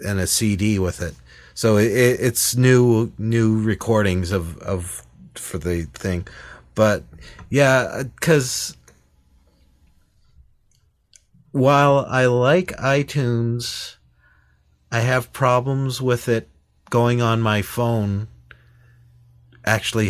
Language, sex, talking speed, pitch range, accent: English, male, 100 wpm, 90-115 Hz, American